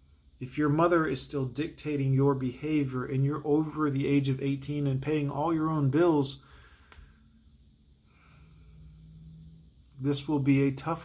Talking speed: 140 wpm